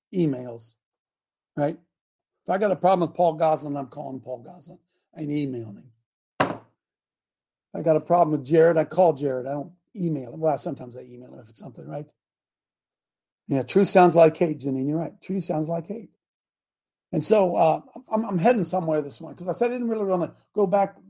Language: English